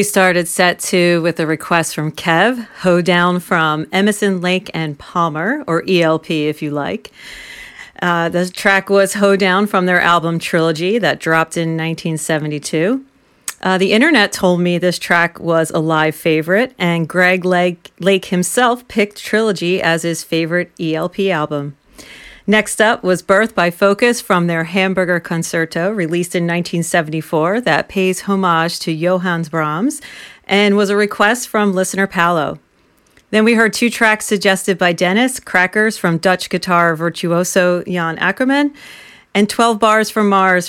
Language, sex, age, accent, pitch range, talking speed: English, female, 40-59, American, 170-205 Hz, 155 wpm